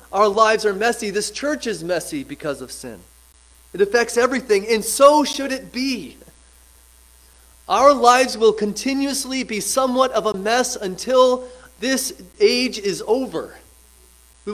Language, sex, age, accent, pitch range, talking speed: English, male, 30-49, American, 155-230 Hz, 140 wpm